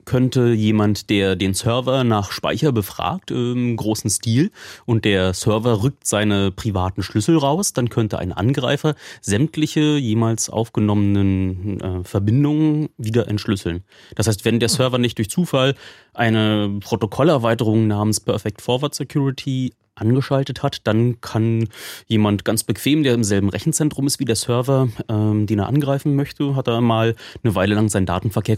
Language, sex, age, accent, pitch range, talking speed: German, male, 30-49, German, 105-130 Hz, 150 wpm